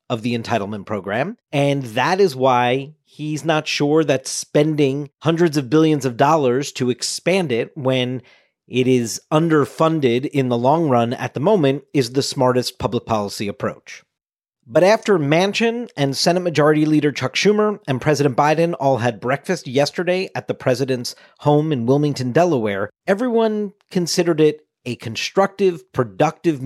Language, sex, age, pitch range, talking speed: English, male, 40-59, 120-160 Hz, 150 wpm